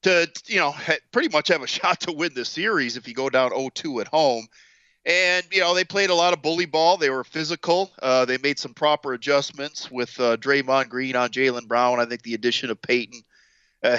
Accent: American